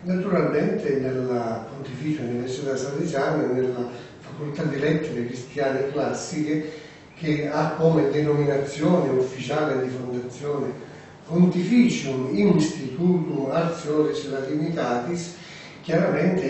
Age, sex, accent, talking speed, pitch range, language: 40-59, male, native, 85 wpm, 130-165 Hz, Italian